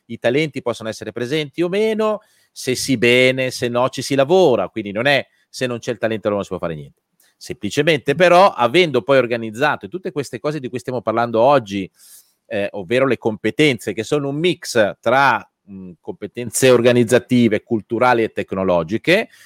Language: Italian